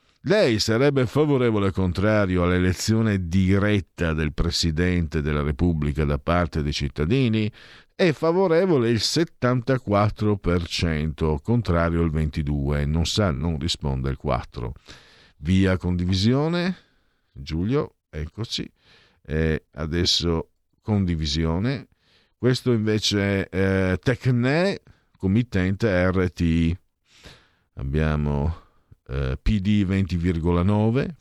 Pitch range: 80-105 Hz